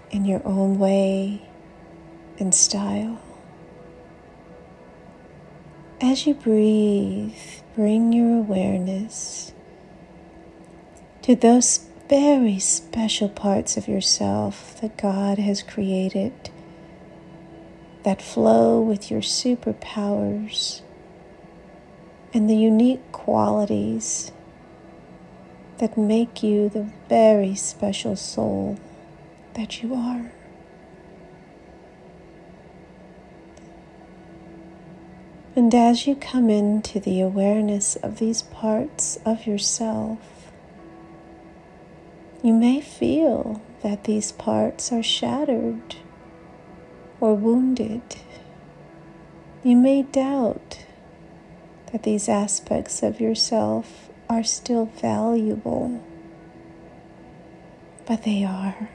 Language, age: English, 40-59